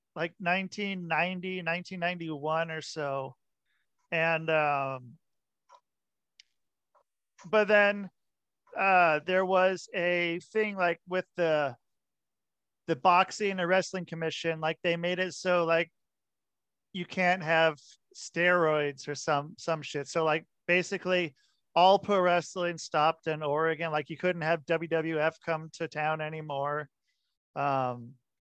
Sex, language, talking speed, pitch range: male, English, 115 wpm, 145-180 Hz